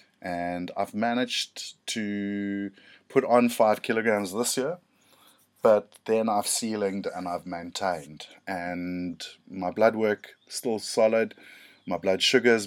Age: 30-49